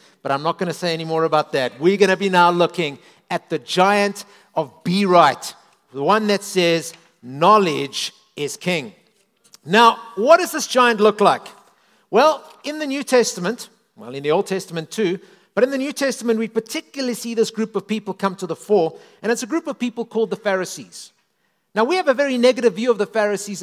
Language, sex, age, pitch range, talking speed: English, male, 50-69, 190-260 Hz, 210 wpm